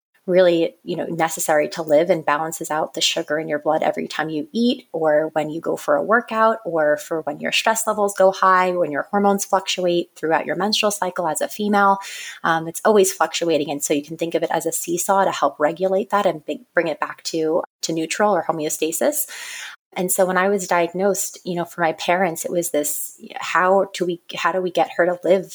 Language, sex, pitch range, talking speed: English, female, 160-195 Hz, 225 wpm